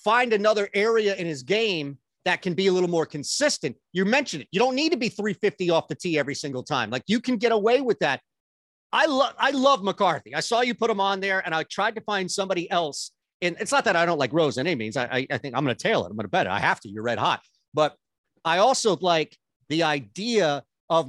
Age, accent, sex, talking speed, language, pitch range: 40-59, American, male, 260 wpm, English, 160-220 Hz